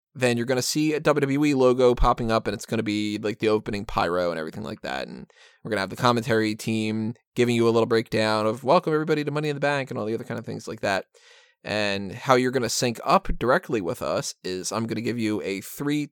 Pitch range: 115-170 Hz